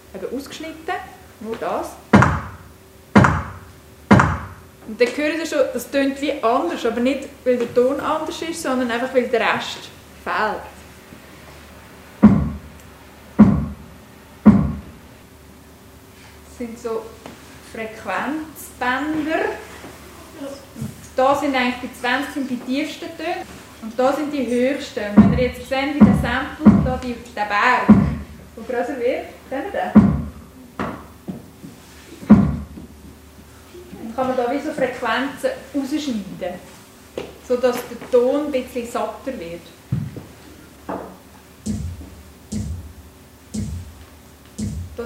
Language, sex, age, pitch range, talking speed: German, female, 20-39, 225-285 Hz, 95 wpm